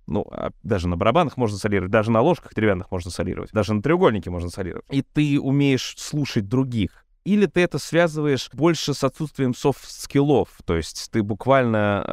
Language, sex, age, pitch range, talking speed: Russian, male, 20-39, 100-135 Hz, 180 wpm